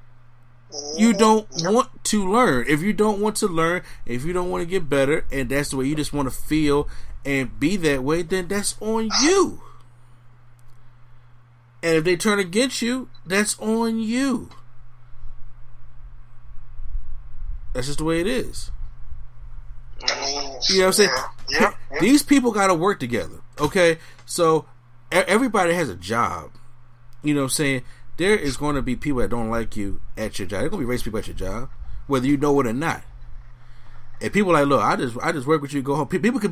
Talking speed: 190 wpm